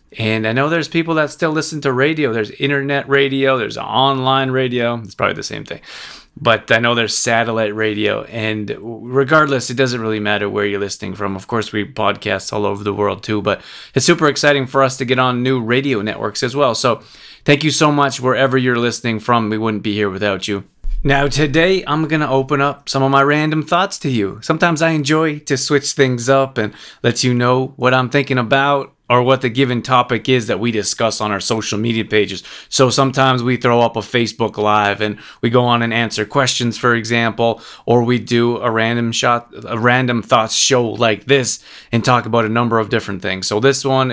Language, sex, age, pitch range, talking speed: English, male, 30-49, 110-135 Hz, 215 wpm